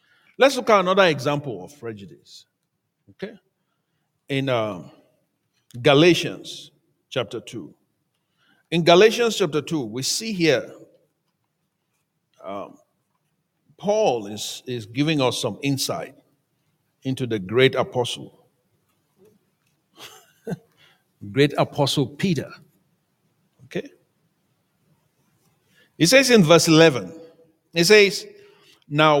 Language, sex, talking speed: English, male, 90 wpm